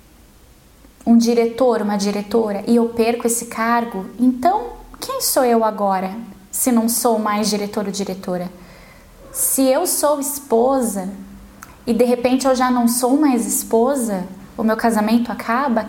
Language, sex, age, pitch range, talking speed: Portuguese, female, 10-29, 210-255 Hz, 145 wpm